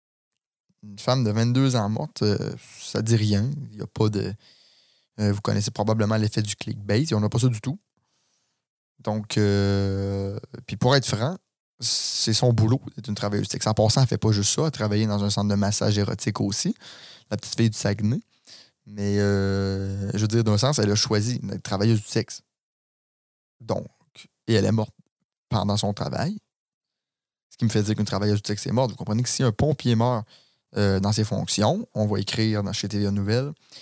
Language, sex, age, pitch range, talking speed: French, male, 20-39, 105-125 Hz, 205 wpm